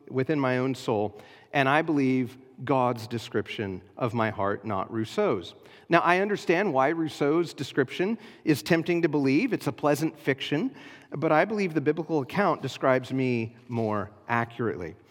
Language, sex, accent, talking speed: English, male, American, 150 wpm